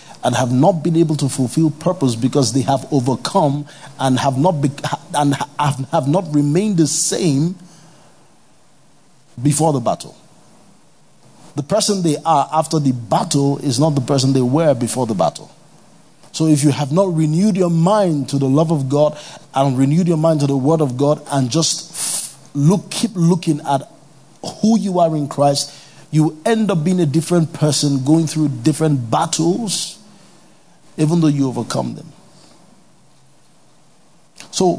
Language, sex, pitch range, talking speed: English, male, 135-165 Hz, 155 wpm